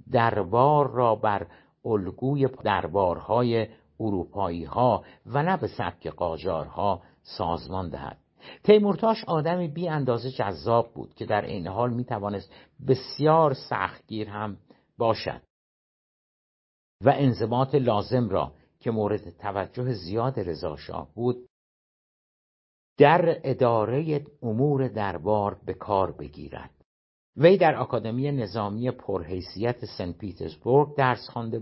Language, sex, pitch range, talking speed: Persian, male, 100-130 Hz, 105 wpm